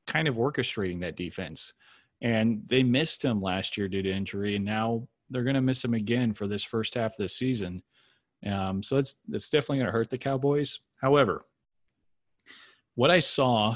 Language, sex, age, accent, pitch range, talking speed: English, male, 30-49, American, 105-125 Hz, 190 wpm